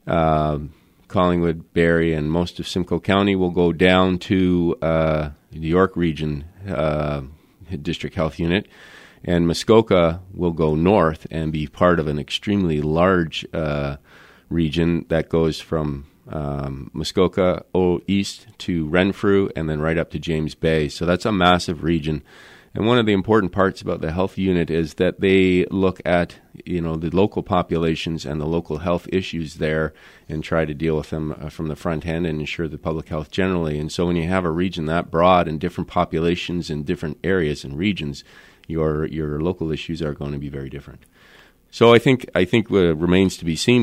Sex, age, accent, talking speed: male, 40-59, American, 180 wpm